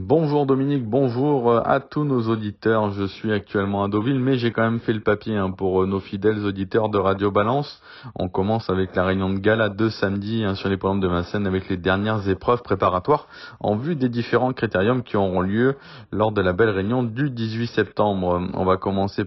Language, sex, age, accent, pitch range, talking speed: French, male, 20-39, French, 95-115 Hz, 200 wpm